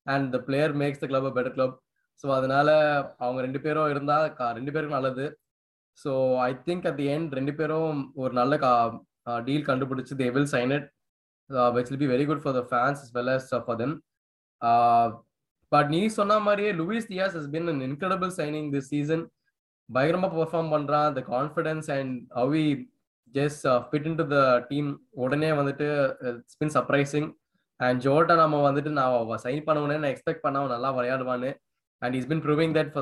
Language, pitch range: Tamil, 130-155 Hz